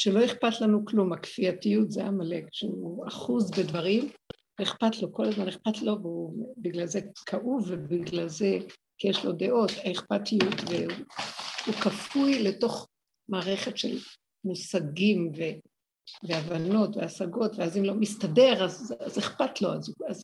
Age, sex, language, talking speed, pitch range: 60-79, female, Hebrew, 140 wpm, 185-220 Hz